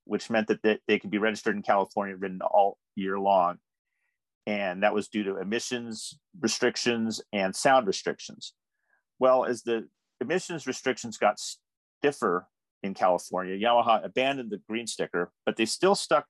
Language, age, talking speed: English, 40-59, 155 wpm